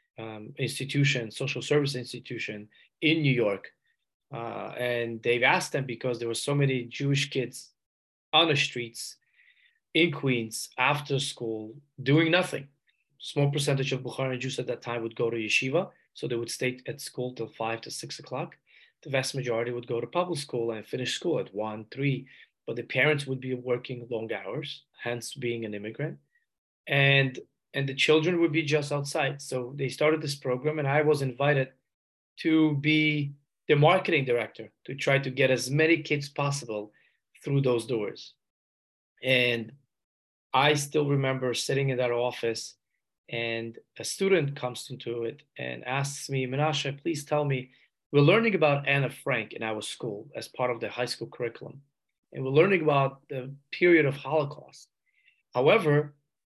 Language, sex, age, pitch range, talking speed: English, male, 20-39, 120-145 Hz, 165 wpm